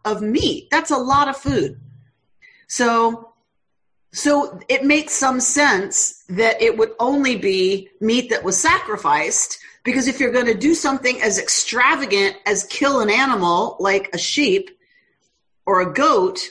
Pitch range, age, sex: 205-295 Hz, 40-59, female